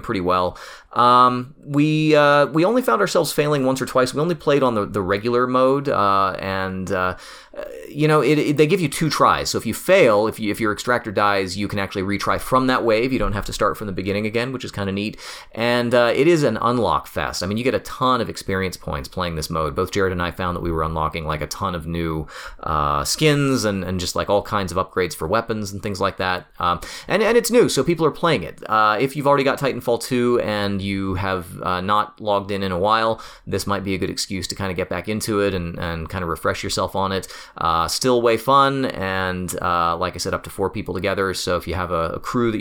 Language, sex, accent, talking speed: English, male, American, 260 wpm